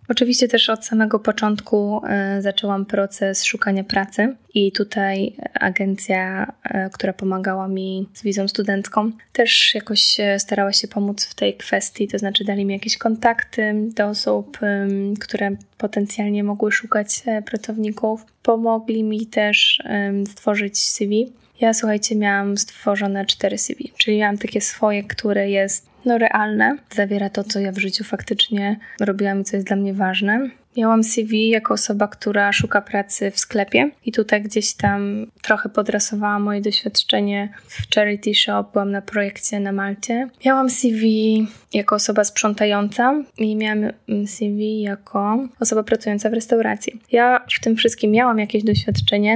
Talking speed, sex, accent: 140 wpm, female, native